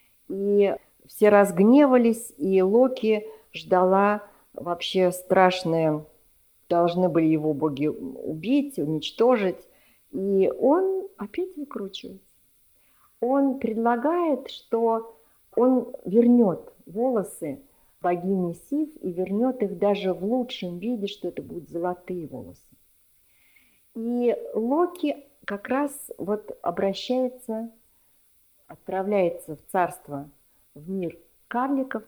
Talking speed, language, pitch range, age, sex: 95 wpm, Russian, 180-250 Hz, 50-69, female